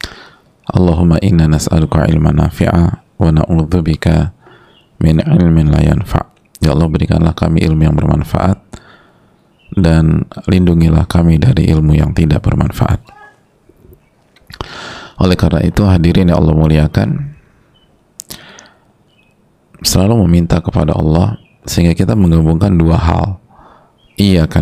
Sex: male